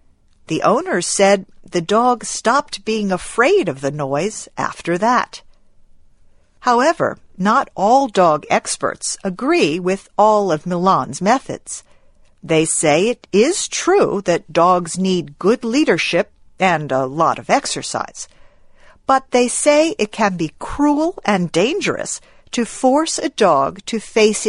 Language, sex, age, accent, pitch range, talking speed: English, female, 50-69, American, 160-230 Hz, 130 wpm